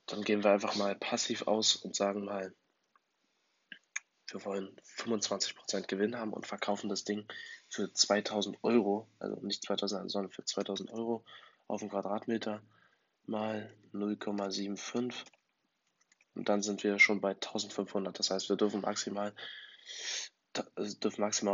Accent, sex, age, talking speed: German, male, 20-39, 130 wpm